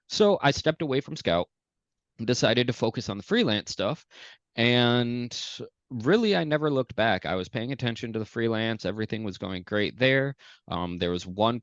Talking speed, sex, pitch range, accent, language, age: 185 wpm, male, 90-115 Hz, American, English, 20-39